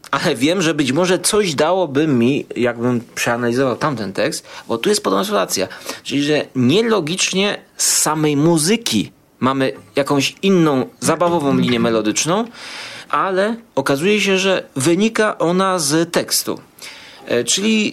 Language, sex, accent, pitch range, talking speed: Polish, male, native, 115-155 Hz, 125 wpm